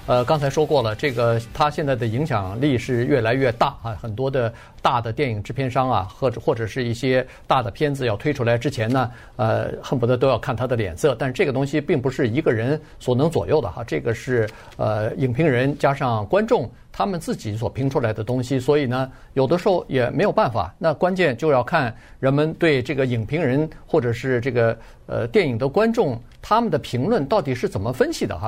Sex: male